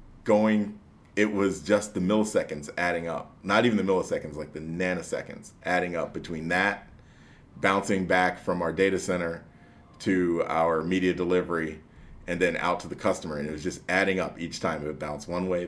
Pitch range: 80-100 Hz